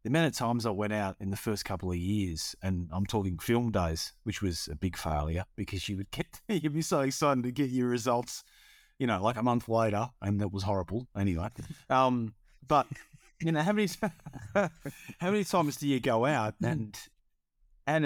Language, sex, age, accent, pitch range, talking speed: English, male, 30-49, Australian, 100-140 Hz, 205 wpm